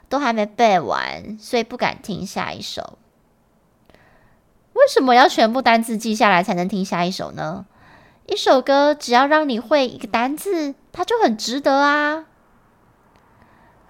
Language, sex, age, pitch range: Chinese, female, 20-39, 220-310 Hz